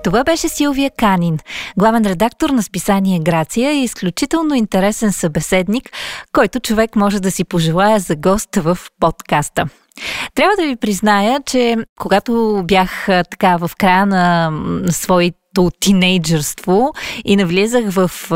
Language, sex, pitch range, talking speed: Bulgarian, female, 175-225 Hz, 130 wpm